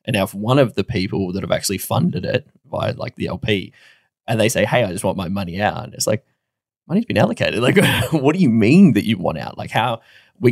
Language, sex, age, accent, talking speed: English, male, 20-39, Australian, 250 wpm